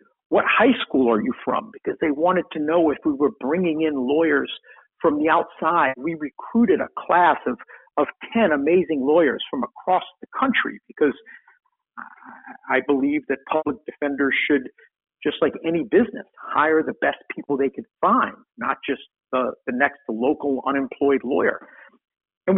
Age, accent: 50-69, American